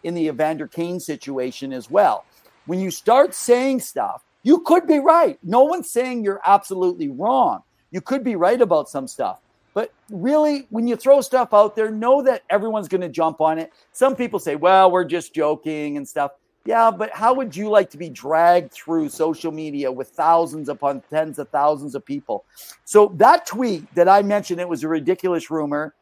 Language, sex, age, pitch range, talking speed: English, male, 50-69, 160-220 Hz, 195 wpm